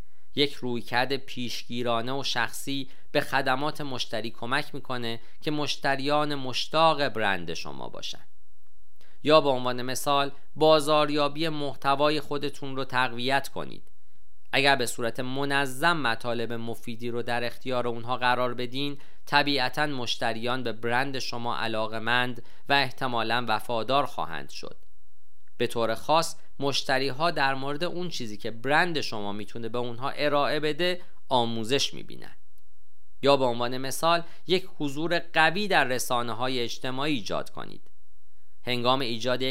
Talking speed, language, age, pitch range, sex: 125 wpm, Persian, 40-59, 115-145 Hz, male